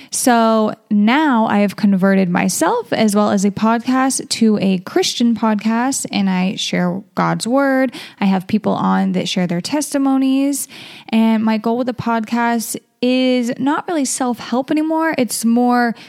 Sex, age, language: female, 10-29, English